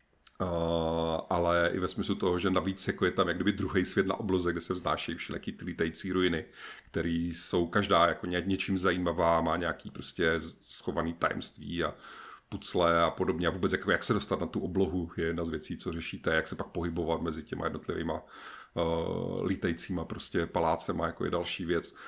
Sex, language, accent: male, Czech, native